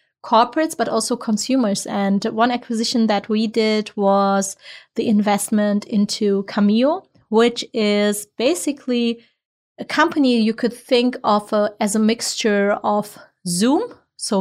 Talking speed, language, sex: 130 wpm, English, female